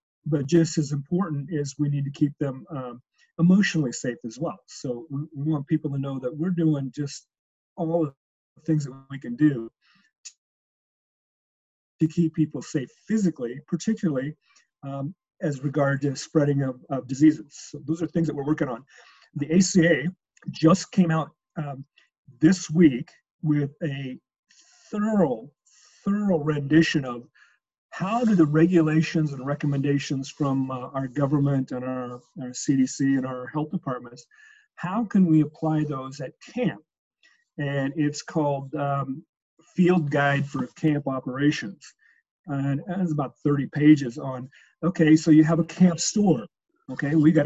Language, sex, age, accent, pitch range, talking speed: English, male, 40-59, American, 140-170 Hz, 150 wpm